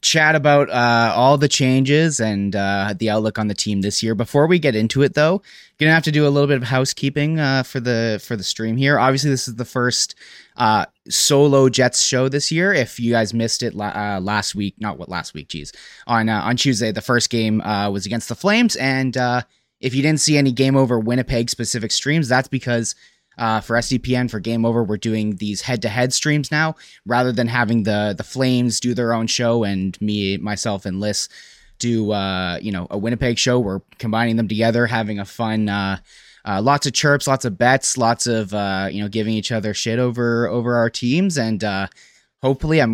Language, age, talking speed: English, 20-39, 215 wpm